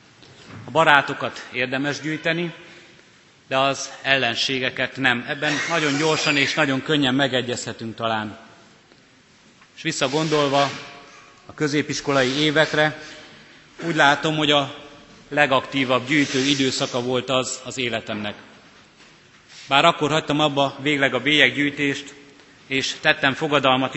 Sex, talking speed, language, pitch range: male, 105 wpm, Hungarian, 130-150 Hz